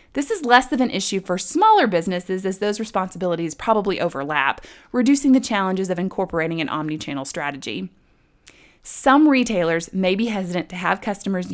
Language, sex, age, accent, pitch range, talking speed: English, female, 20-39, American, 175-230 Hz, 155 wpm